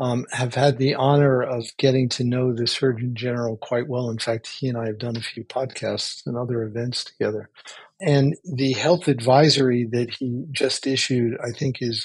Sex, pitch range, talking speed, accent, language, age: male, 125-150 Hz, 195 wpm, American, English, 50-69